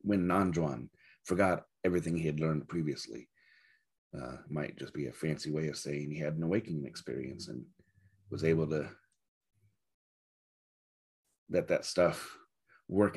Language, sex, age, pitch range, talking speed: English, male, 30-49, 75-90 Hz, 135 wpm